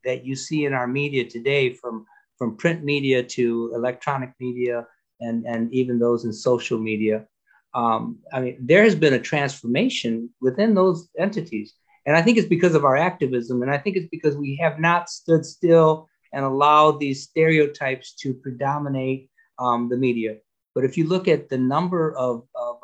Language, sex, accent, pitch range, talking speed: English, male, American, 130-185 Hz, 175 wpm